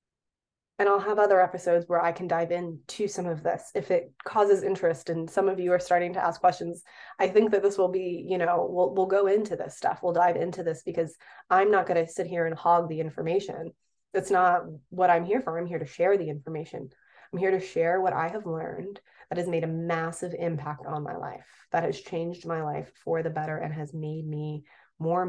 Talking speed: 230 wpm